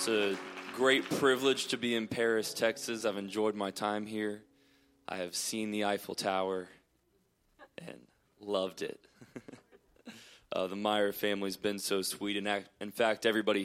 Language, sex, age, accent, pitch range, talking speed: English, male, 20-39, American, 105-115 Hz, 150 wpm